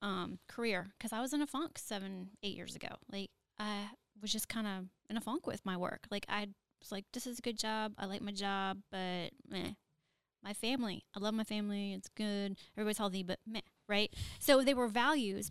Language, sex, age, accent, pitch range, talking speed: English, female, 10-29, American, 190-225 Hz, 215 wpm